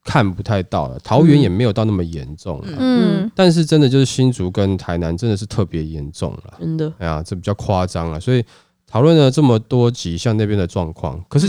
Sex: male